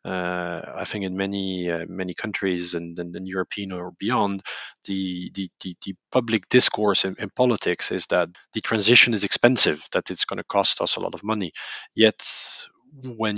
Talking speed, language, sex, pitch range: 180 wpm, English, male, 95-110 Hz